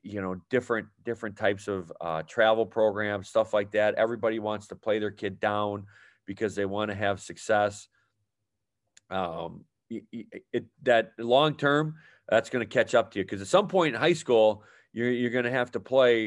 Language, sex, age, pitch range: English, male, 40-59, 105-130 Hz